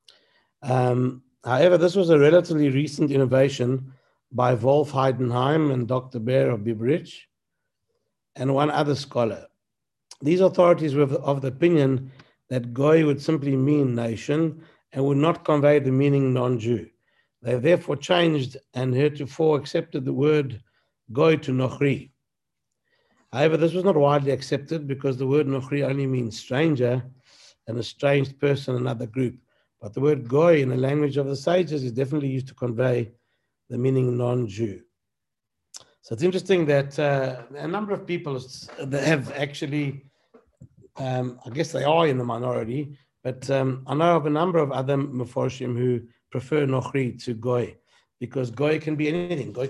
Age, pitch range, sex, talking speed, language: 60-79, 125-150 Hz, male, 155 wpm, English